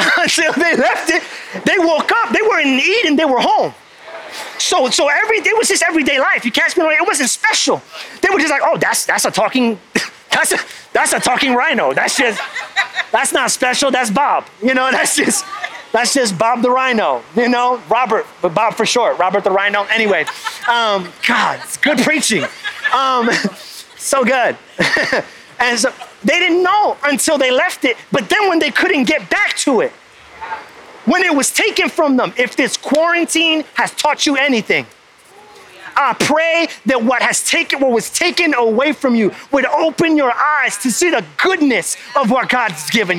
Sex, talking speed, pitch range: male, 185 wpm, 230-320 Hz